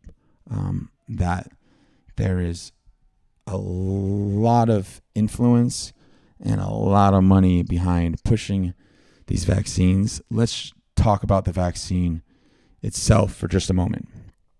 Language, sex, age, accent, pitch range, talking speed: English, male, 30-49, American, 85-105 Hz, 110 wpm